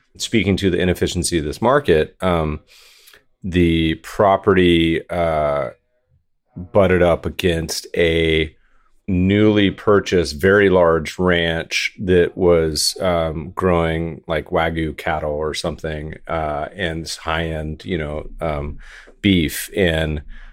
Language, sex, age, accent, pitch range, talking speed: English, male, 30-49, American, 80-100 Hz, 110 wpm